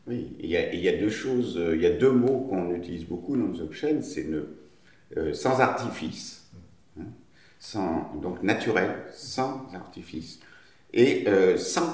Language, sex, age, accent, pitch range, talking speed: French, male, 50-69, French, 105-160 Hz, 180 wpm